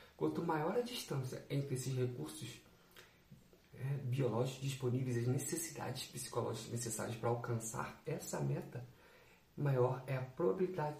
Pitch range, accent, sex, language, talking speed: 120-145 Hz, Brazilian, male, Portuguese, 120 wpm